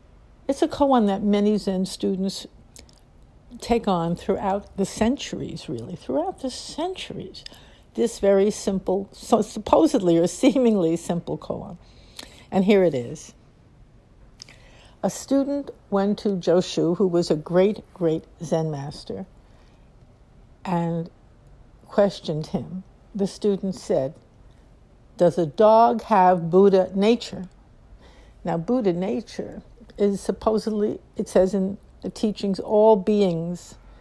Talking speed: 115 wpm